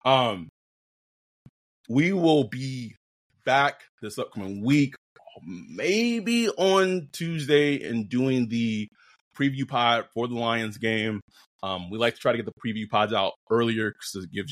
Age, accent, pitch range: 20-39, American, 105-130 Hz